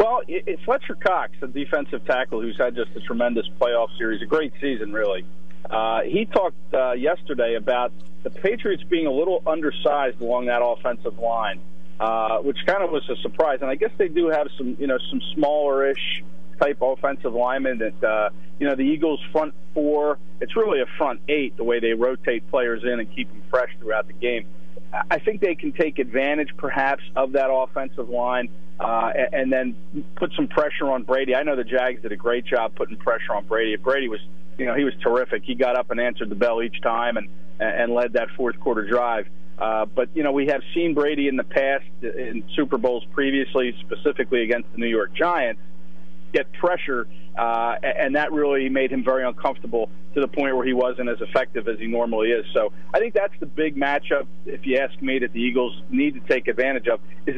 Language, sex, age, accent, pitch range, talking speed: English, male, 40-59, American, 115-150 Hz, 205 wpm